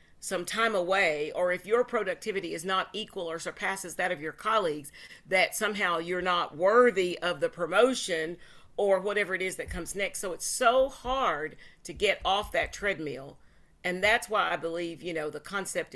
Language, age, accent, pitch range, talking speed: English, 50-69, American, 175-210 Hz, 185 wpm